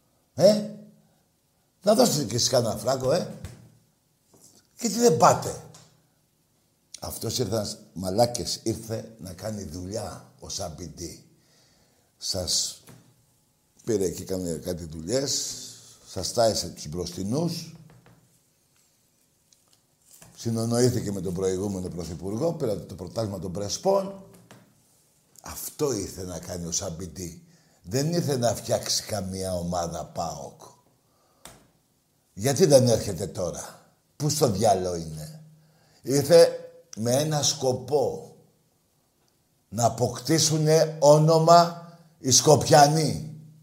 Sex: male